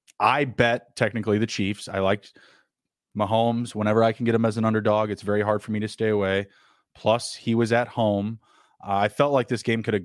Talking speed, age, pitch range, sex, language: 220 wpm, 20-39, 100-115 Hz, male, English